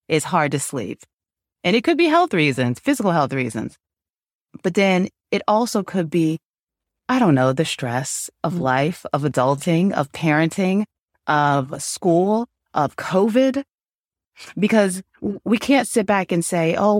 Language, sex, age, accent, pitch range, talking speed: English, female, 30-49, American, 150-185 Hz, 150 wpm